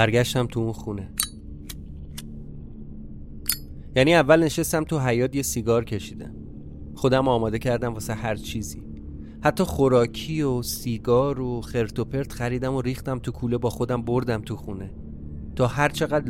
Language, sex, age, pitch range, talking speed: Persian, male, 30-49, 100-130 Hz, 145 wpm